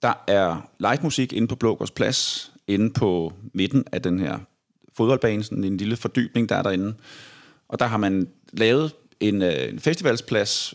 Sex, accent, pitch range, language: male, native, 100-130 Hz, Danish